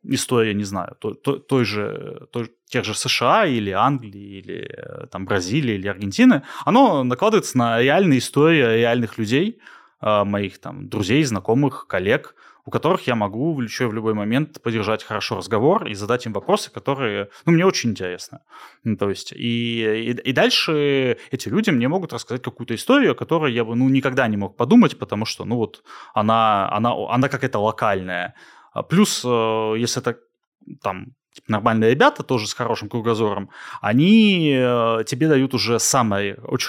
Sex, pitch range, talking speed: male, 110-140 Hz, 155 wpm